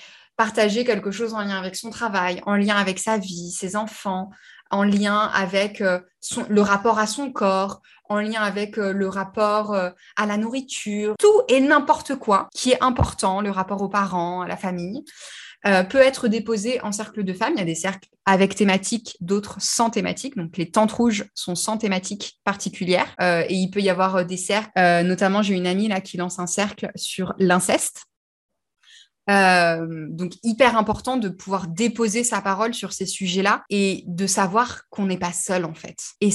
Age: 20-39